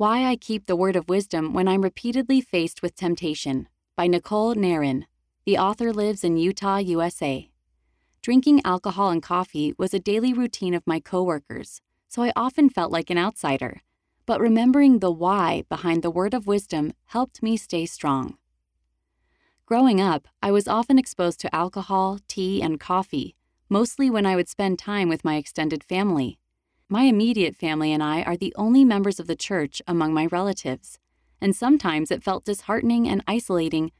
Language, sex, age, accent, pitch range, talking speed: English, female, 30-49, American, 160-210 Hz, 170 wpm